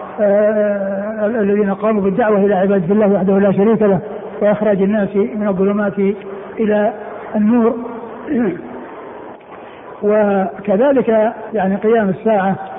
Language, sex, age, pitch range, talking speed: Arabic, male, 60-79, 195-215 Hz, 95 wpm